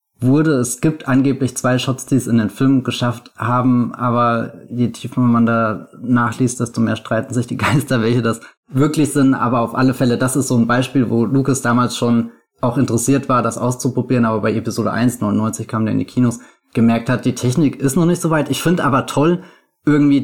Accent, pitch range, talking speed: German, 120-145 Hz, 210 wpm